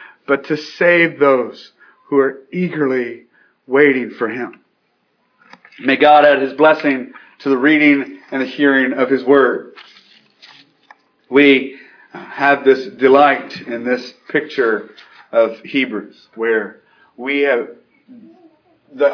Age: 40-59